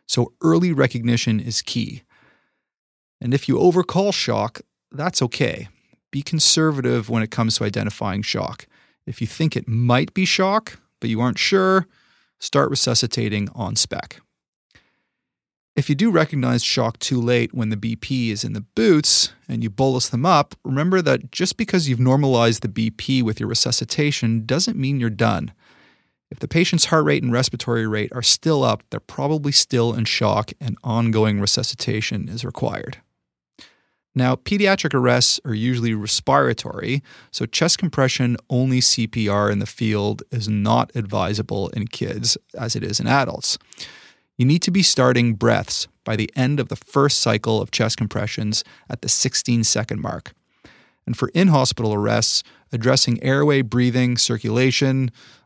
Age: 30-49